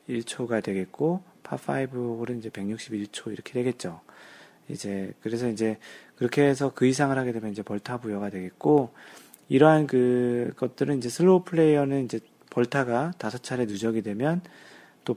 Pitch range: 105-140 Hz